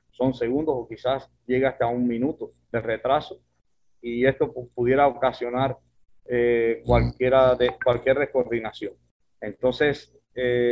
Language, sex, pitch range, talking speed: Spanish, male, 115-135 Hz, 120 wpm